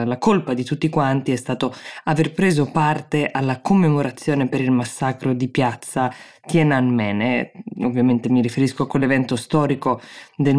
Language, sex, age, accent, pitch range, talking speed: Italian, female, 20-39, native, 125-150 Hz, 145 wpm